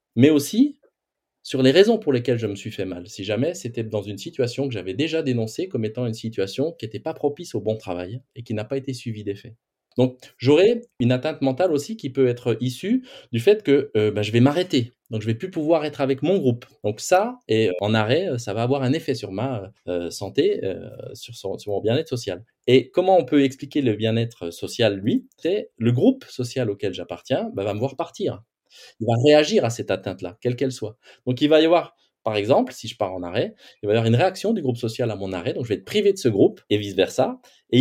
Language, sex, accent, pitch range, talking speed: French, male, French, 110-150 Hz, 245 wpm